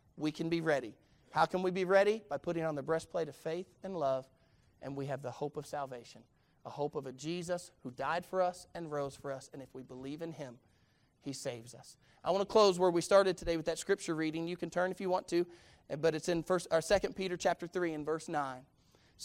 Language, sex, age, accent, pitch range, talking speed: English, male, 30-49, American, 140-180 Hz, 240 wpm